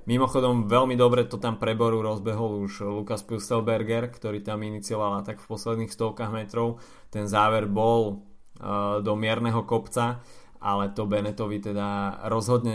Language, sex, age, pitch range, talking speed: Slovak, male, 20-39, 105-120 Hz, 140 wpm